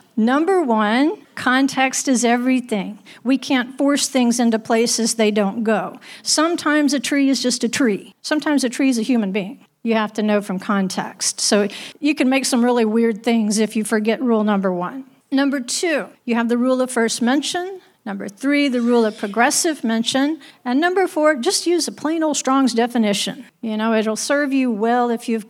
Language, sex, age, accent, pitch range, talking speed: English, female, 50-69, American, 220-275 Hz, 195 wpm